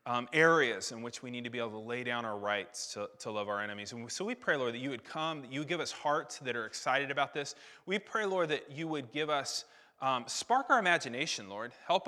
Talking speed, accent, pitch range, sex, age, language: 265 wpm, American, 120-165 Hz, male, 30-49, English